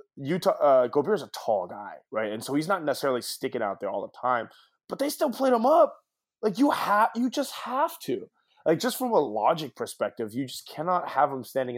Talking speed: 220 wpm